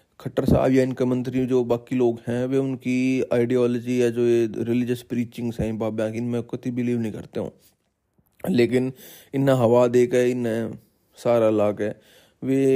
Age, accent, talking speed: 30-49, native, 165 wpm